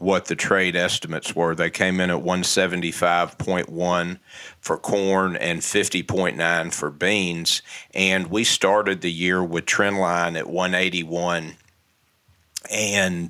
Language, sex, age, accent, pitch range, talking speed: English, male, 50-69, American, 85-100 Hz, 160 wpm